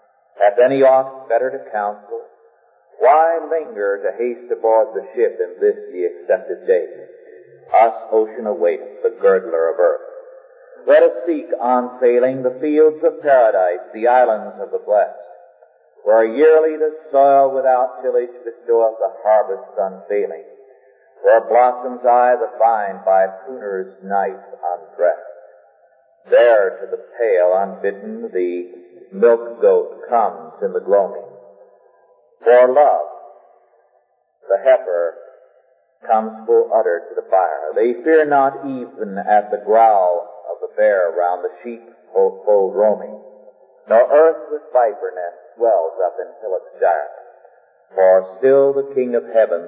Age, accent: 50-69, American